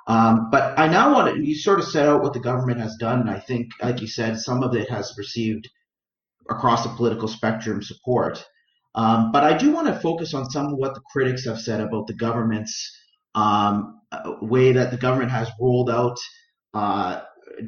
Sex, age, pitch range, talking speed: male, 40-59, 115-140 Hz, 200 wpm